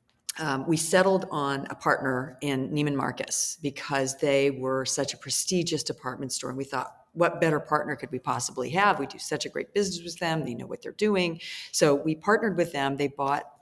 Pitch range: 135-180 Hz